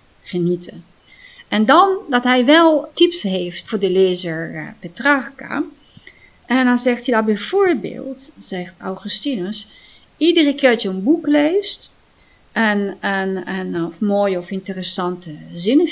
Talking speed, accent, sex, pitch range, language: 125 wpm, Dutch, female, 185-250 Hz, Dutch